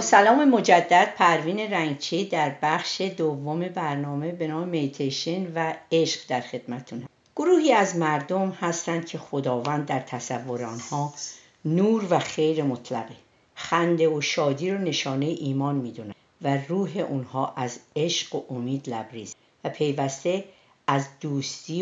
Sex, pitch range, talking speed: female, 130-175 Hz, 125 wpm